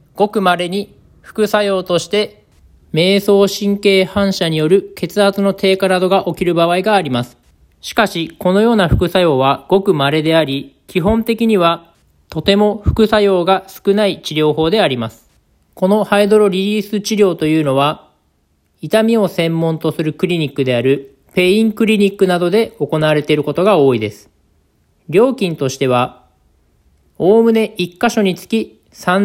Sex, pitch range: male, 145-195 Hz